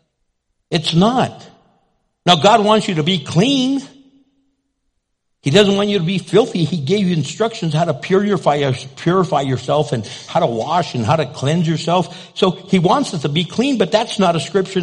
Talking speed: 180 wpm